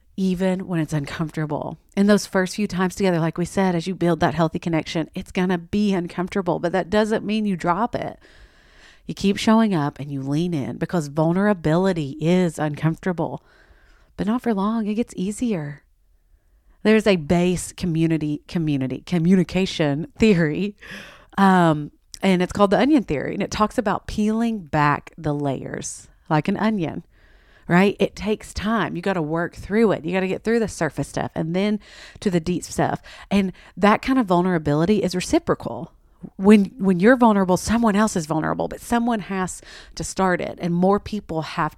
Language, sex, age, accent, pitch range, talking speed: English, female, 40-59, American, 155-200 Hz, 180 wpm